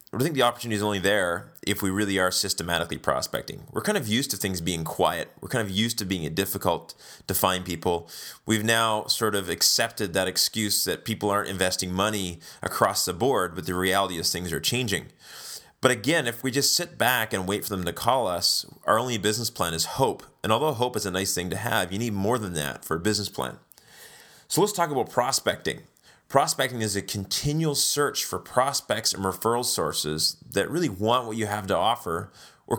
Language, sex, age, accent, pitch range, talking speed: English, male, 30-49, American, 95-115 Hz, 210 wpm